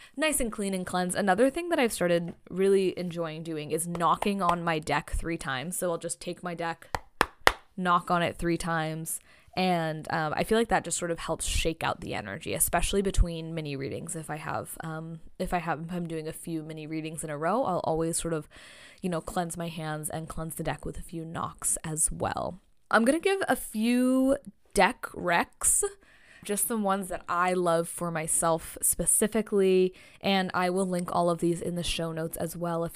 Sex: female